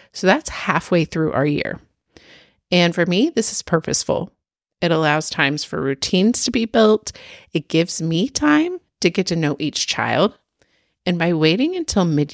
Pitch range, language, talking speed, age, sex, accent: 145-210 Hz, English, 170 wpm, 30-49, female, American